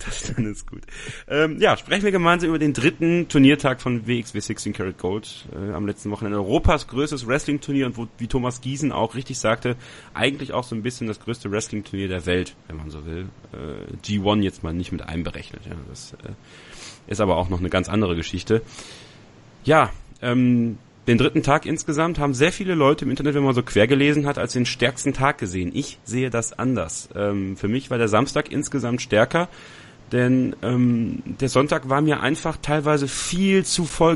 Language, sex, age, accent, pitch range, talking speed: German, male, 30-49, German, 110-145 Hz, 195 wpm